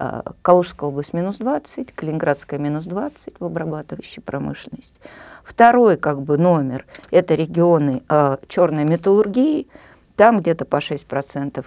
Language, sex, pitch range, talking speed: Russian, female, 145-195 Hz, 125 wpm